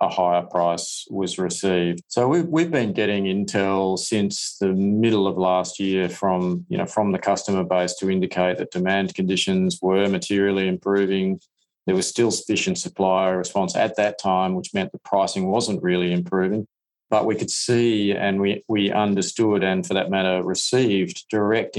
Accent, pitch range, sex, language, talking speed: Australian, 95-100 Hz, male, English, 175 wpm